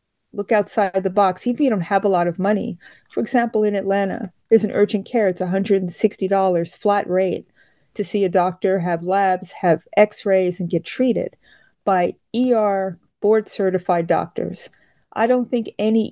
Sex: female